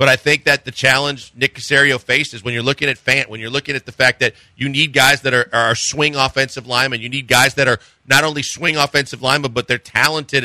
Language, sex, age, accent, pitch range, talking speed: English, male, 40-59, American, 130-155 Hz, 245 wpm